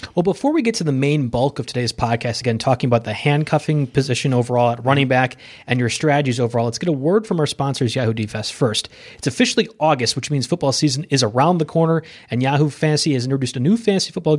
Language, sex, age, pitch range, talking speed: English, male, 30-49, 125-155 Hz, 230 wpm